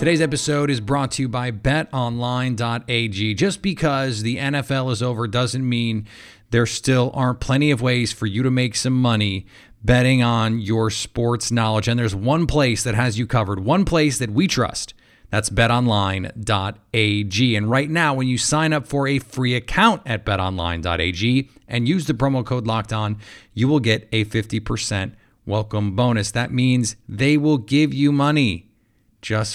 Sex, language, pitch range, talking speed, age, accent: male, English, 110-140 Hz, 165 wpm, 30-49, American